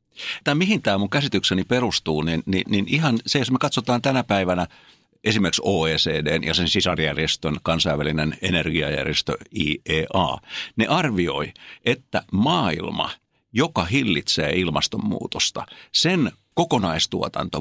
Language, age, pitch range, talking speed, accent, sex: Finnish, 60-79, 80-125 Hz, 110 wpm, native, male